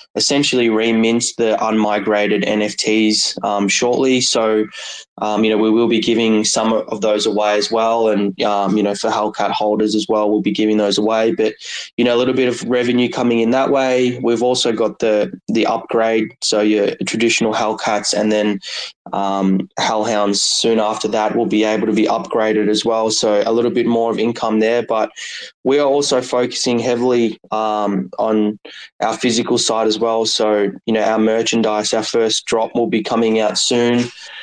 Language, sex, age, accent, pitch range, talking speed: English, male, 20-39, Australian, 110-120 Hz, 185 wpm